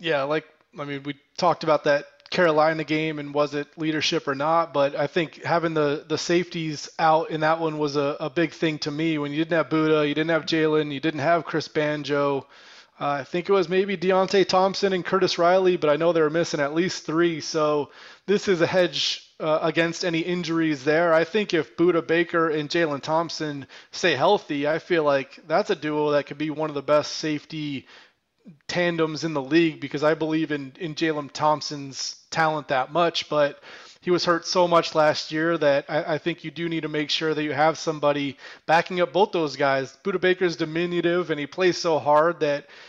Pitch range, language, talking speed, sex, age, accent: 150-170 Hz, English, 215 wpm, male, 20-39, American